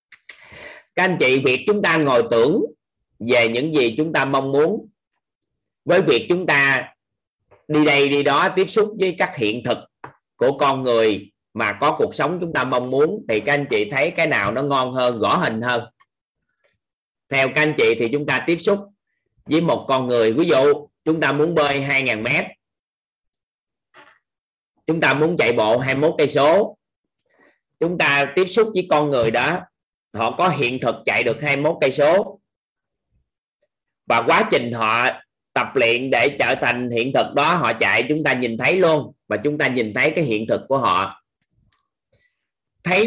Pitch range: 130-165 Hz